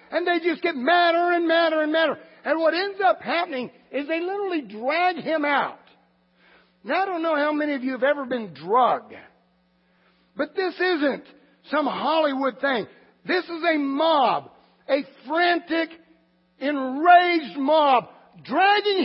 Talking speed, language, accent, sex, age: 150 wpm, English, American, male, 60-79